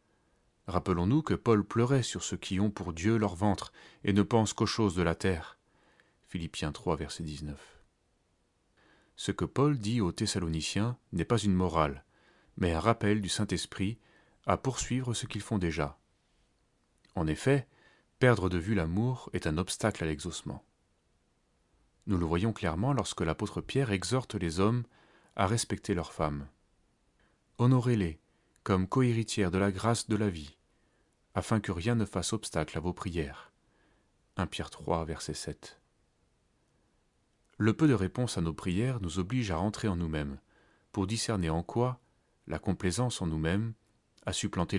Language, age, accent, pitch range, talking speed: French, 30-49, French, 85-115 Hz, 155 wpm